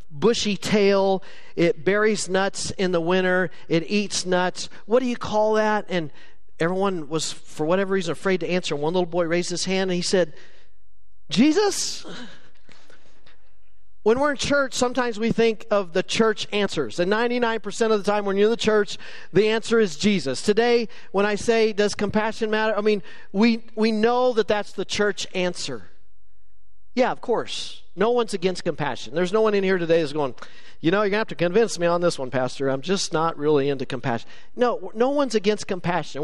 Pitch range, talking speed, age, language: 150-210 Hz, 190 wpm, 40-59, English